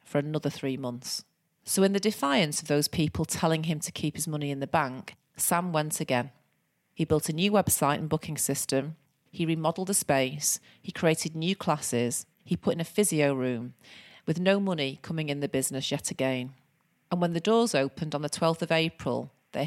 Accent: British